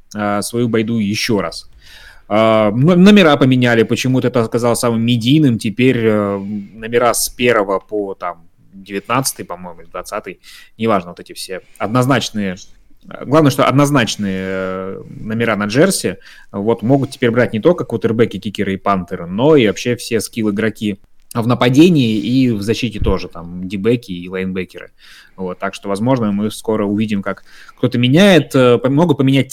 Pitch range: 105-125 Hz